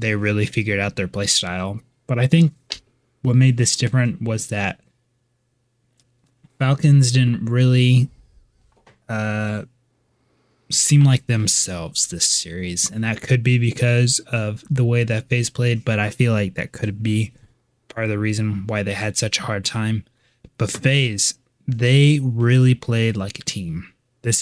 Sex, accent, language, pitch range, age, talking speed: male, American, English, 110-130 Hz, 20-39, 155 wpm